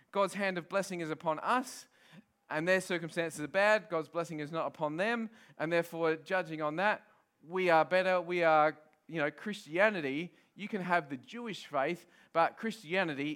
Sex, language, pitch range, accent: male, English, 150-195 Hz, Australian